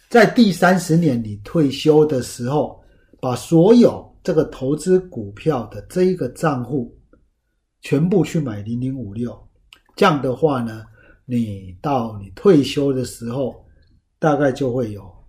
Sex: male